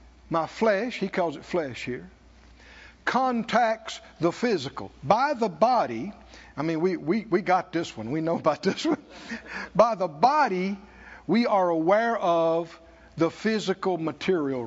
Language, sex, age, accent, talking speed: English, male, 60-79, American, 145 wpm